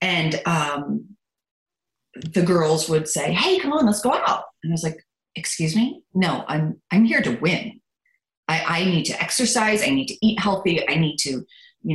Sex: female